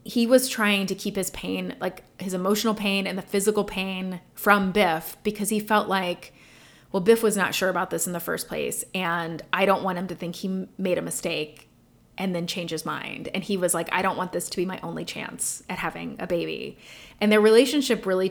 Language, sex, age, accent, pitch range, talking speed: English, female, 30-49, American, 180-215 Hz, 225 wpm